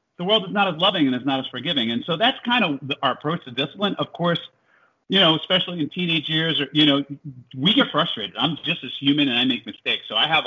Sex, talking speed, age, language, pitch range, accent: male, 265 wpm, 40-59, English, 115-150 Hz, American